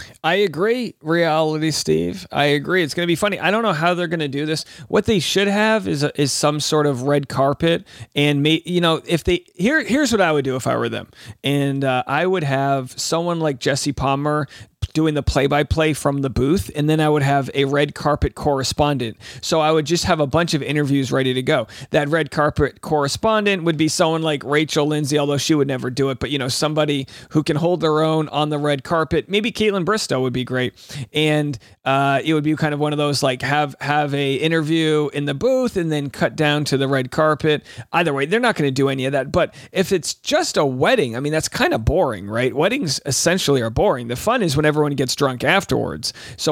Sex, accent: male, American